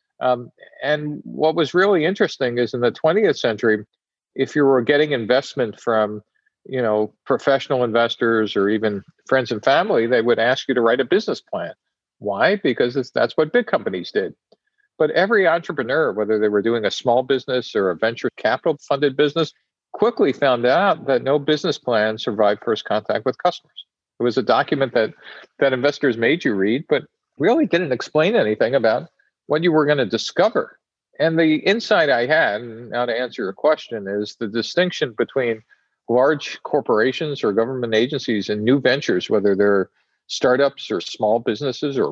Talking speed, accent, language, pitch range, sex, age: 175 wpm, American, English, 115-155 Hz, male, 50-69